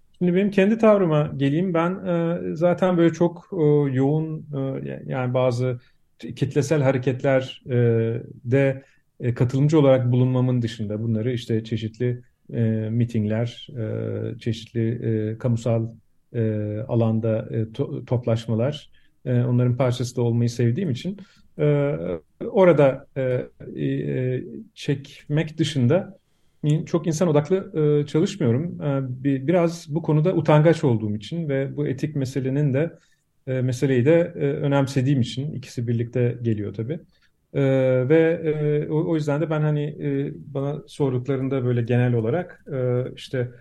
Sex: male